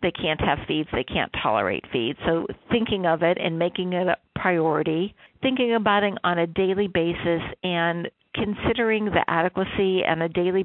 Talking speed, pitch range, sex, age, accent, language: 175 wpm, 165-190 Hz, female, 50-69, American, English